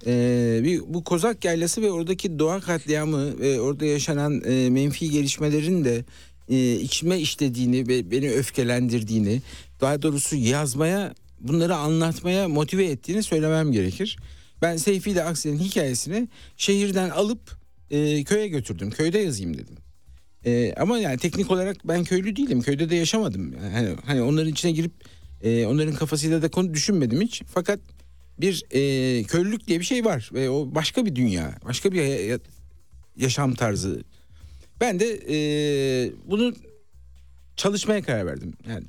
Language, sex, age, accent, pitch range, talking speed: Turkish, male, 60-79, native, 115-165 Hz, 145 wpm